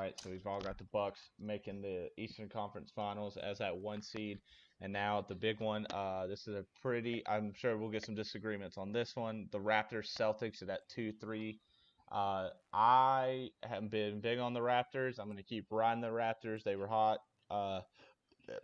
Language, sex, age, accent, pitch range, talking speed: English, male, 20-39, American, 100-115 Hz, 200 wpm